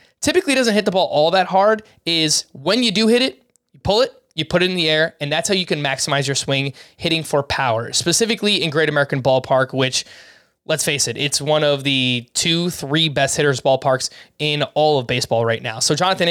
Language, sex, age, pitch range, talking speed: English, male, 20-39, 140-185 Hz, 220 wpm